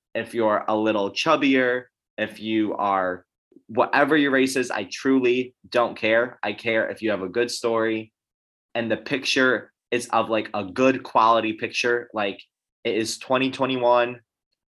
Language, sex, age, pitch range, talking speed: English, male, 20-39, 105-130 Hz, 155 wpm